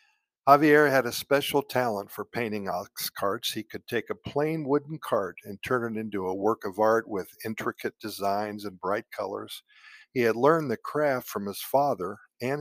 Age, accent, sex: 50-69, American, male